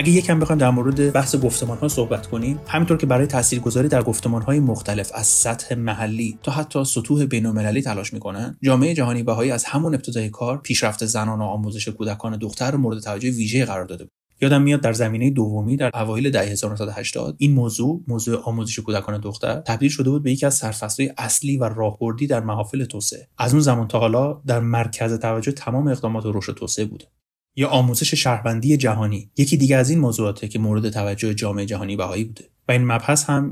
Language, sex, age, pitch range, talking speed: Persian, male, 30-49, 110-130 Hz, 195 wpm